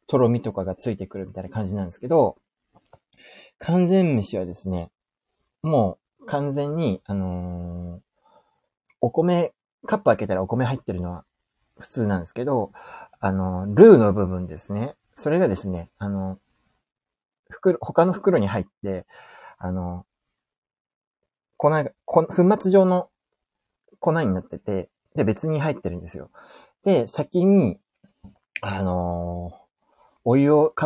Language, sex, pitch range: Japanese, male, 95-150 Hz